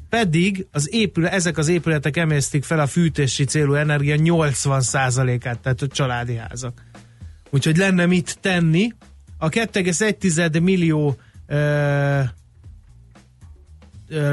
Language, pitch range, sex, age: Hungarian, 135-170 Hz, male, 30-49